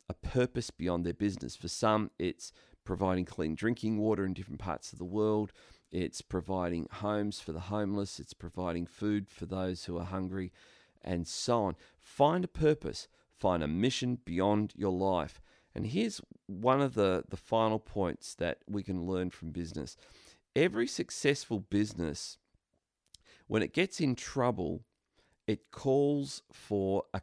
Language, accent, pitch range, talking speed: English, Australian, 90-120 Hz, 155 wpm